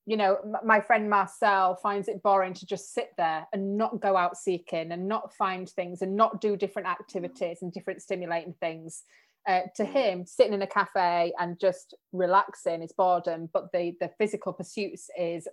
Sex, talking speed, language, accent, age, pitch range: female, 185 wpm, English, British, 30-49, 175-220 Hz